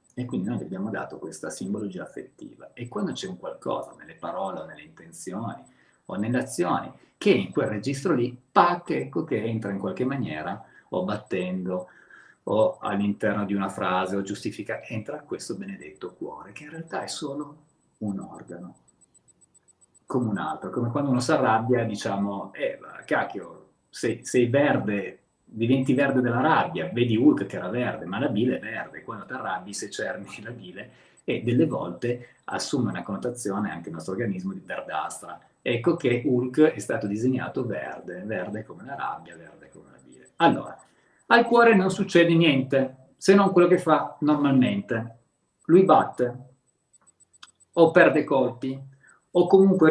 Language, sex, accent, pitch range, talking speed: Italian, male, native, 110-150 Hz, 160 wpm